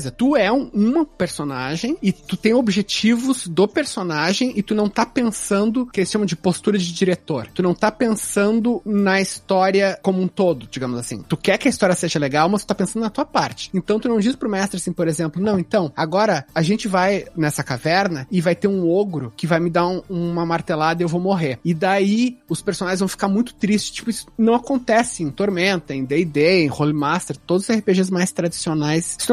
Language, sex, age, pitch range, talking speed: Portuguese, male, 30-49, 170-215 Hz, 220 wpm